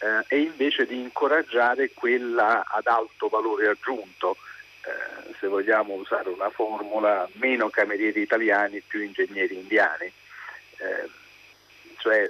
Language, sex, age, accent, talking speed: Italian, male, 50-69, native, 110 wpm